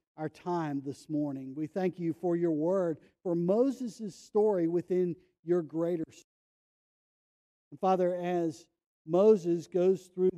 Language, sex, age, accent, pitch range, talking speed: English, male, 50-69, American, 145-180 Hz, 125 wpm